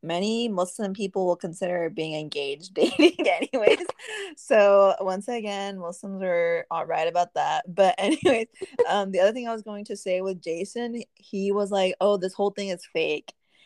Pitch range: 170-220 Hz